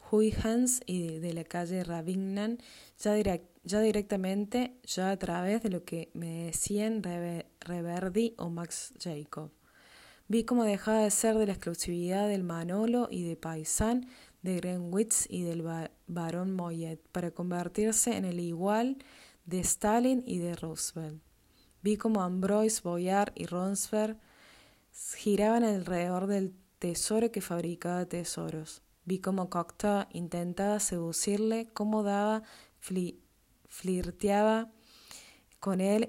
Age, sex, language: 20-39, female, Spanish